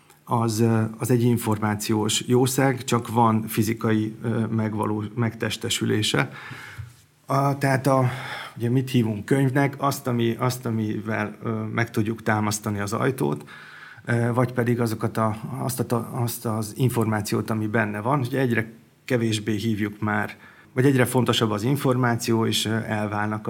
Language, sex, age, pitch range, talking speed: Hungarian, male, 30-49, 110-120 Hz, 130 wpm